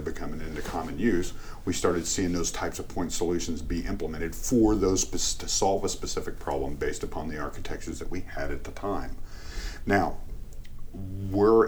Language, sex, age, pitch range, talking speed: English, male, 40-59, 80-95 Hz, 170 wpm